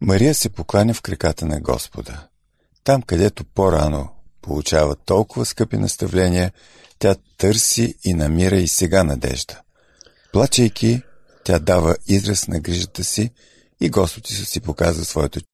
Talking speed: 125 wpm